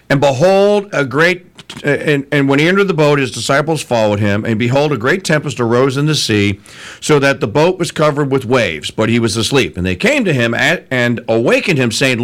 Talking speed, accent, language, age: 220 wpm, American, English, 50-69